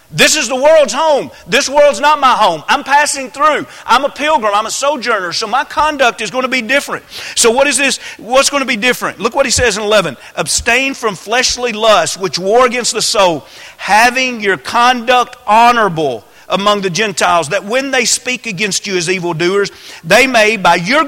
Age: 40-59